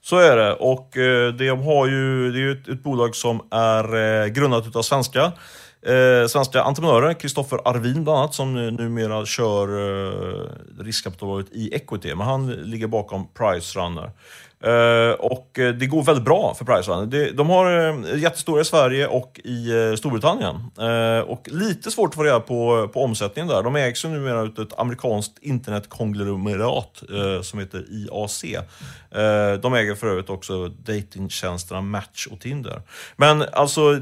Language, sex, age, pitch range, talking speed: Swedish, male, 30-49, 105-140 Hz, 145 wpm